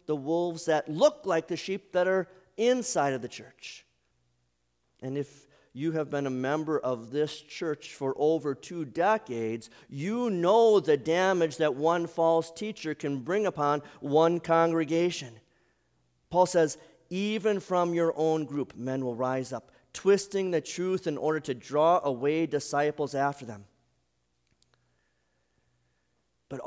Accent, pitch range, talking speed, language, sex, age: American, 125-175 Hz, 140 wpm, English, male, 40-59